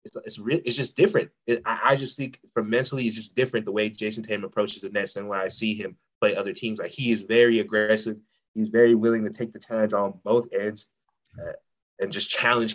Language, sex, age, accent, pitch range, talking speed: English, male, 20-39, American, 105-120 Hz, 235 wpm